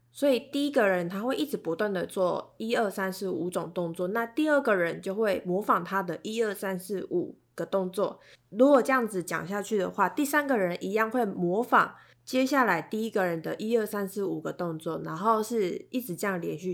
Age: 20-39